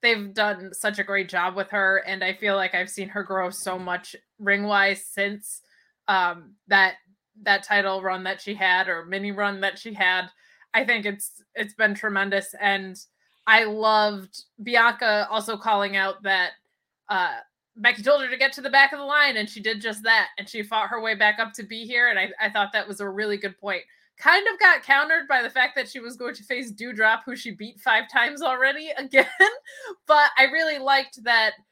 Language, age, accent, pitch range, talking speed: English, 20-39, American, 195-235 Hz, 210 wpm